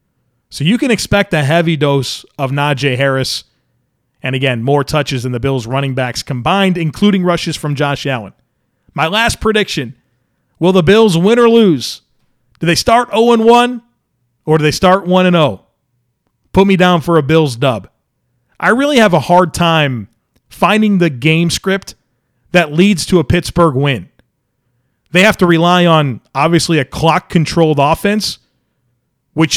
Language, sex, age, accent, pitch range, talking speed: English, male, 40-59, American, 135-185 Hz, 155 wpm